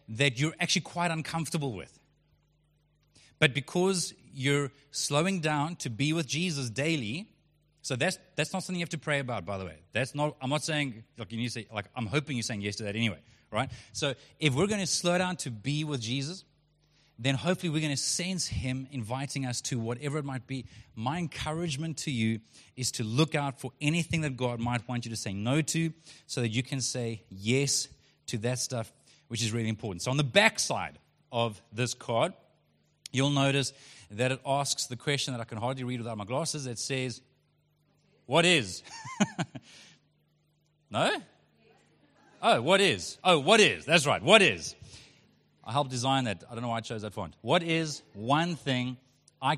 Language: English